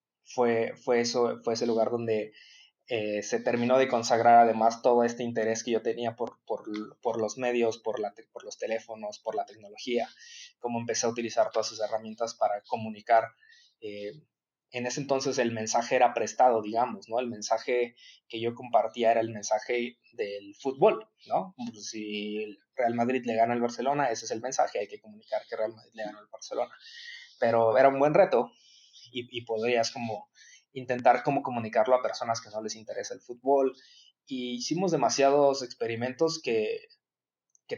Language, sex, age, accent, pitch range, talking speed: Spanish, male, 20-39, Mexican, 110-130 Hz, 175 wpm